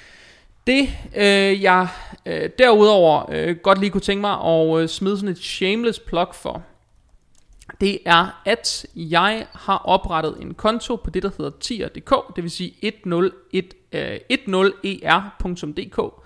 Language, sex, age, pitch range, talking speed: Danish, male, 30-49, 165-200 Hz, 120 wpm